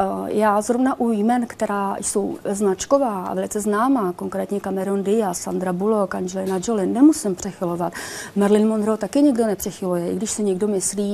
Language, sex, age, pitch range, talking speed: Czech, female, 30-49, 200-255 Hz, 155 wpm